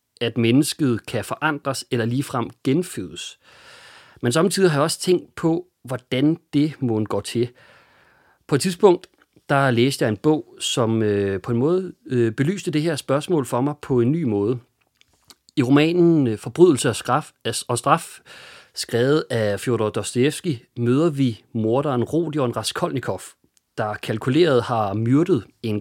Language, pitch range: English, 115-160 Hz